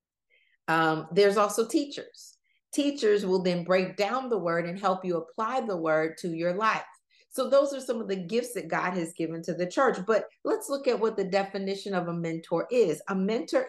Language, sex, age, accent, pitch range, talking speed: English, female, 40-59, American, 170-230 Hz, 205 wpm